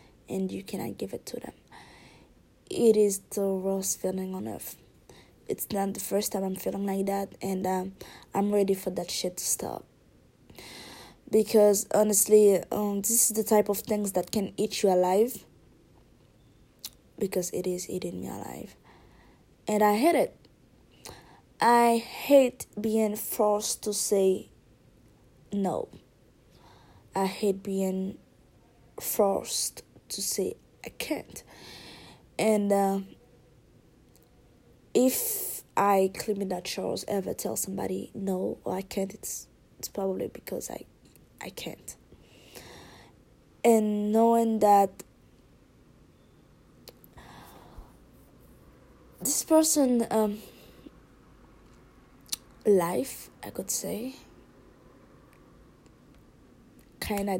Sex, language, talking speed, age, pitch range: female, English, 110 wpm, 20-39, 190-215 Hz